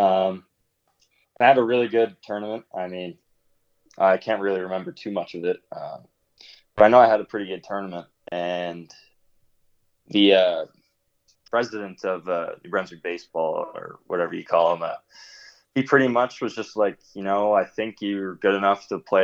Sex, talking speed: male, 180 wpm